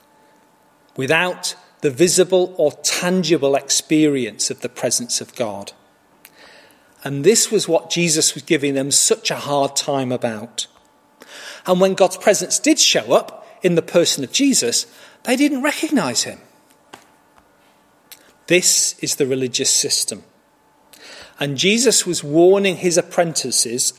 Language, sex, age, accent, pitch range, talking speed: English, male, 40-59, British, 140-195 Hz, 130 wpm